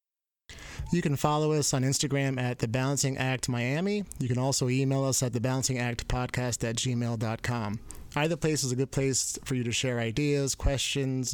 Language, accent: English, American